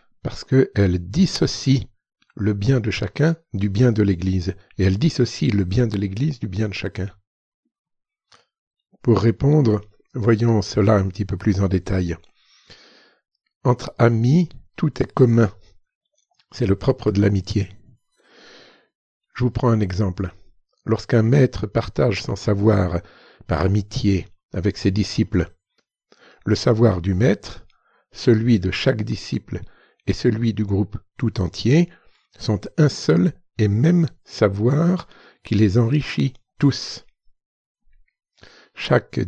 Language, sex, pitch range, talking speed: French, male, 100-125 Hz, 125 wpm